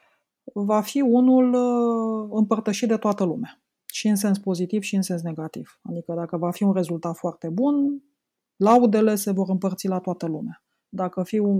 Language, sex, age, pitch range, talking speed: Romanian, female, 30-49, 180-220 Hz, 170 wpm